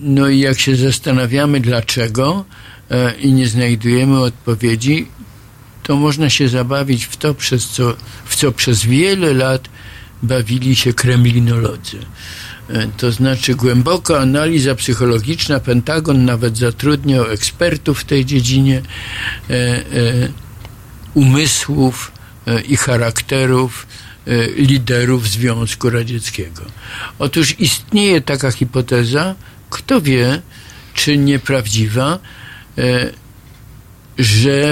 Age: 50-69